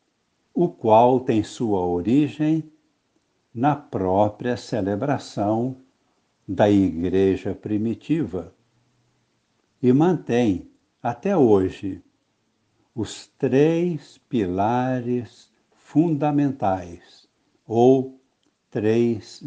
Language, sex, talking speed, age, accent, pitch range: Portuguese, male, 65 wpm, 60-79, Brazilian, 100-140 Hz